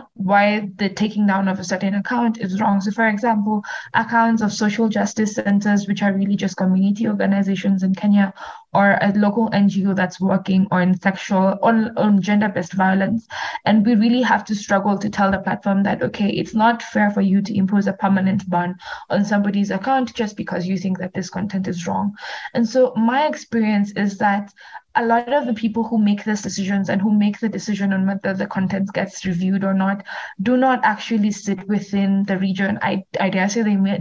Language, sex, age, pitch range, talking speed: English, female, 20-39, 195-225 Hz, 200 wpm